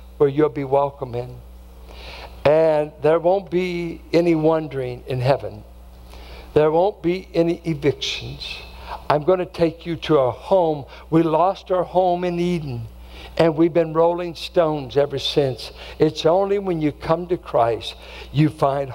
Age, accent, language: 60-79, American, English